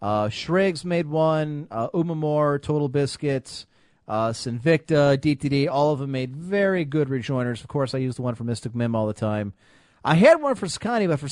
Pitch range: 130-180 Hz